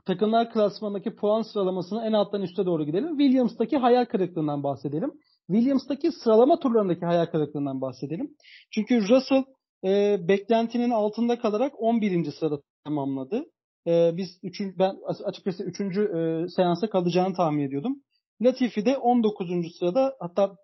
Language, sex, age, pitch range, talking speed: Turkish, male, 40-59, 170-225 Hz, 130 wpm